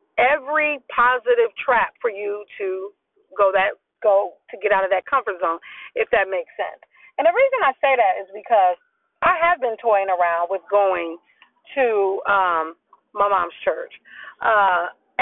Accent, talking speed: American, 160 wpm